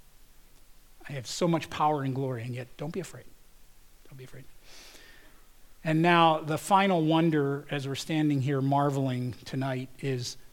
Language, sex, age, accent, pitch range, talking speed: English, male, 40-59, American, 130-180 Hz, 155 wpm